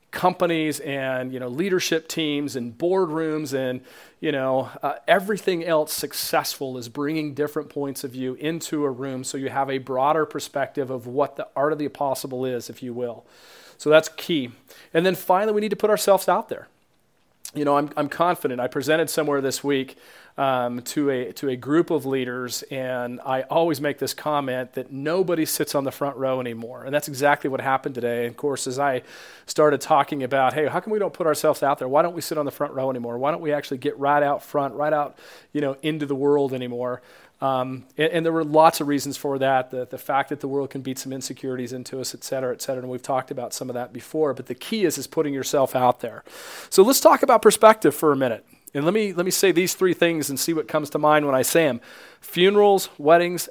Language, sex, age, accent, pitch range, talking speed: English, male, 40-59, American, 130-160 Hz, 230 wpm